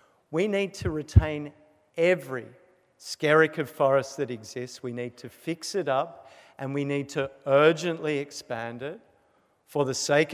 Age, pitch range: 50-69, 135-160 Hz